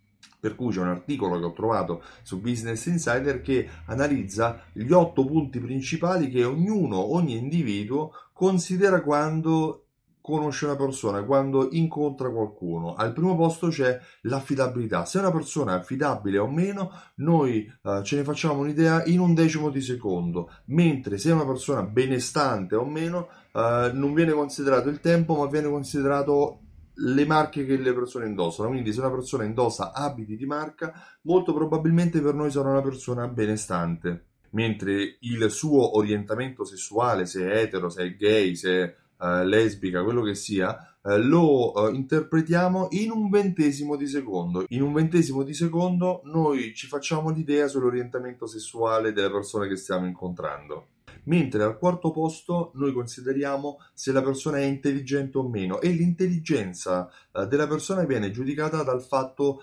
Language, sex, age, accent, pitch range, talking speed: Italian, male, 30-49, native, 105-155 Hz, 155 wpm